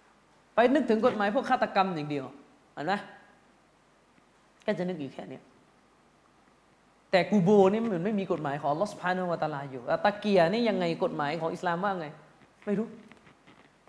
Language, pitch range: Thai, 180-235 Hz